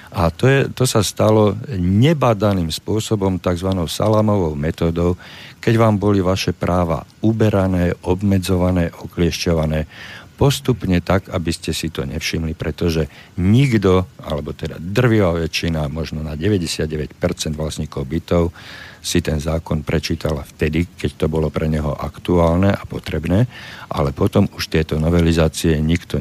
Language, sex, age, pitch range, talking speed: Slovak, male, 50-69, 80-100 Hz, 130 wpm